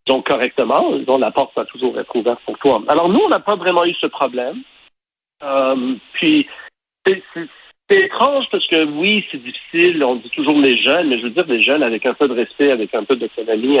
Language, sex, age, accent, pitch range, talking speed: French, male, 50-69, French, 120-185 Hz, 225 wpm